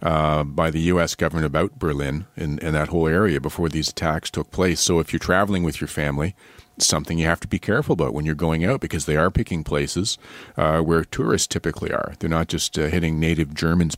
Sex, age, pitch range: male, 50-69, 80-95 Hz